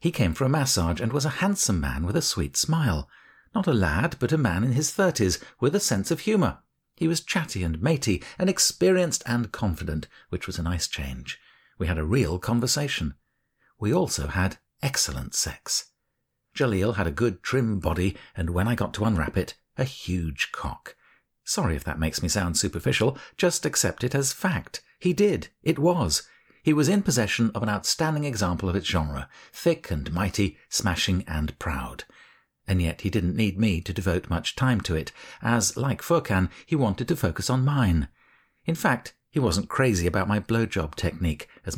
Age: 50-69